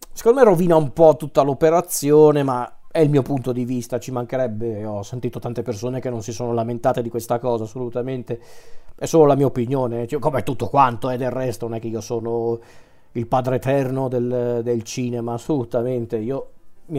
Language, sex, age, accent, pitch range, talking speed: Italian, male, 40-59, native, 120-150 Hz, 190 wpm